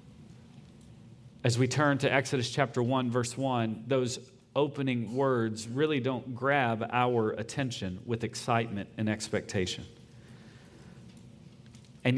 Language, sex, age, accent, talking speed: English, male, 40-59, American, 110 wpm